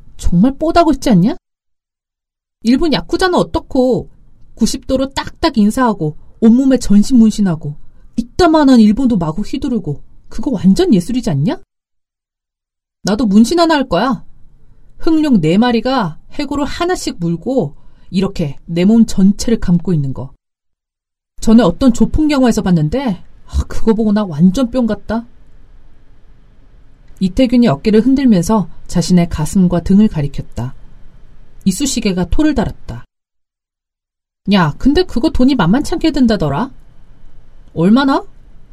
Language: Korean